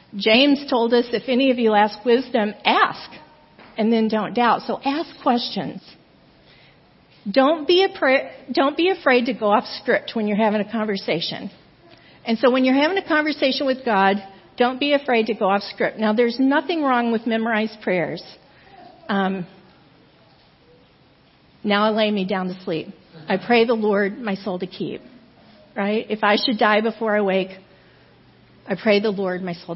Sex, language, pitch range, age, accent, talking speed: female, English, 205-255 Hz, 50-69, American, 165 wpm